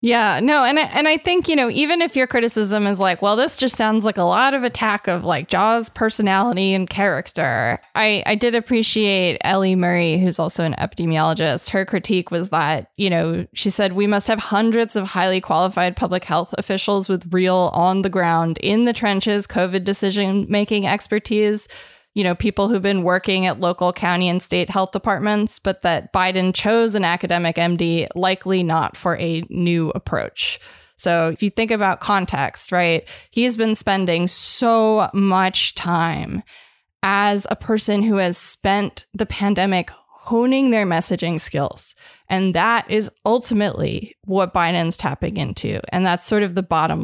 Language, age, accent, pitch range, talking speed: English, 20-39, American, 180-215 Hz, 170 wpm